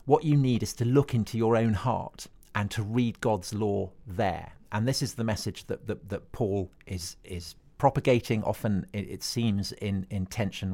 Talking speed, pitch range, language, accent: 190 wpm, 105-140 Hz, English, British